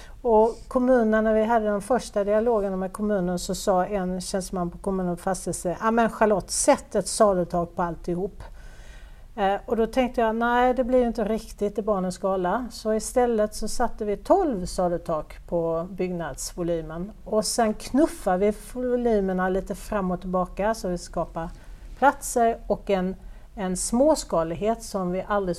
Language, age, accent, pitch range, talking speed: Swedish, 50-69, native, 180-225 Hz, 160 wpm